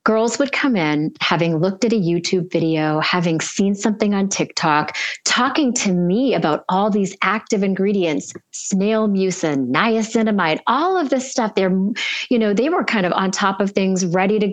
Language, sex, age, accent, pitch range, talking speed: English, female, 30-49, American, 170-230 Hz, 180 wpm